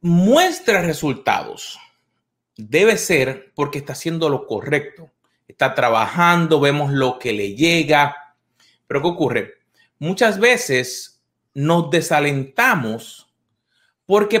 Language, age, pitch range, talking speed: Spanish, 30-49, 135-210 Hz, 100 wpm